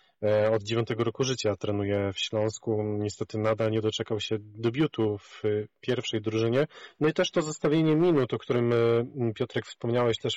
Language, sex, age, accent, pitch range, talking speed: Polish, male, 30-49, native, 110-130 Hz, 155 wpm